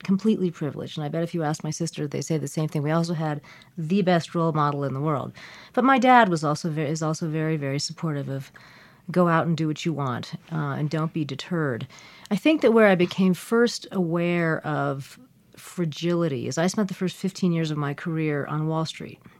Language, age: English, 40-59